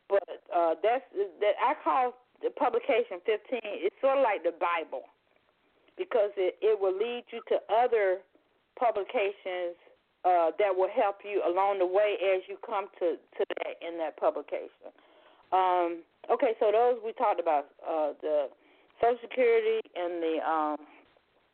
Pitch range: 185-270 Hz